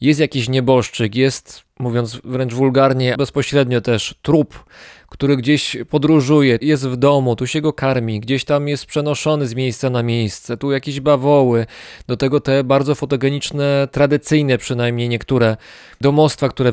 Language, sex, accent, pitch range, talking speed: Polish, male, native, 125-150 Hz, 145 wpm